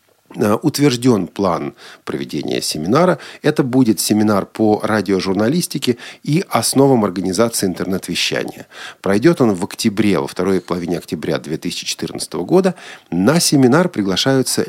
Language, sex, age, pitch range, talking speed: Russian, male, 40-59, 85-130 Hz, 105 wpm